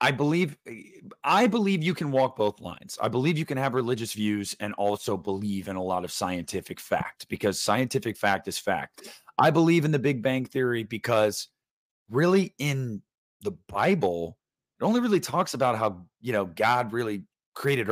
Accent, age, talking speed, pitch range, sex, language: American, 30-49, 180 wpm, 100-145 Hz, male, English